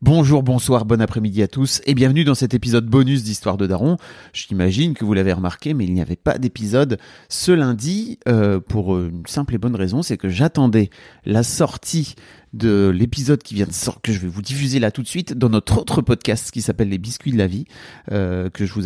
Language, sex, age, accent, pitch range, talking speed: French, male, 30-49, French, 100-135 Hz, 225 wpm